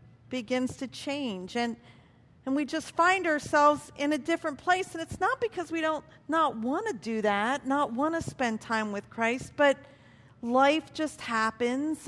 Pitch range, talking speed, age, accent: 220-295 Hz, 175 wpm, 40-59, American